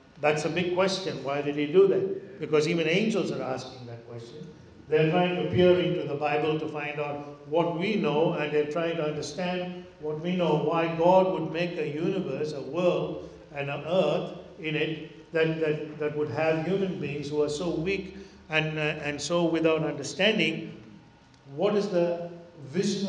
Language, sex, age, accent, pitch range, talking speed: English, male, 60-79, Indian, 160-200 Hz, 185 wpm